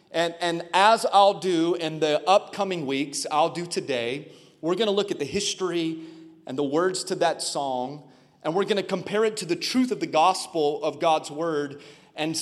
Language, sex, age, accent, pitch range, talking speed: English, male, 30-49, American, 160-195 Hz, 200 wpm